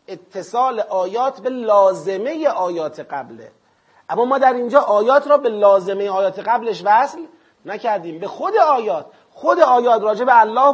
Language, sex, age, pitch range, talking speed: Persian, male, 30-49, 190-260 Hz, 145 wpm